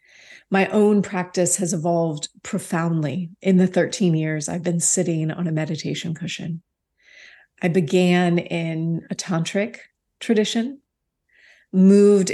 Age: 30-49